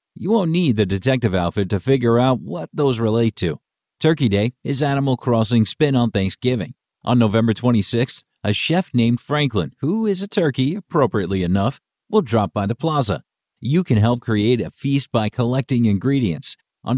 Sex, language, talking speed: male, English, 175 wpm